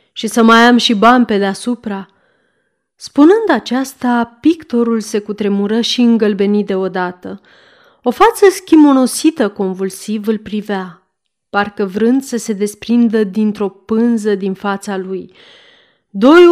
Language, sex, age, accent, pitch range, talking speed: Romanian, female, 30-49, native, 200-260 Hz, 120 wpm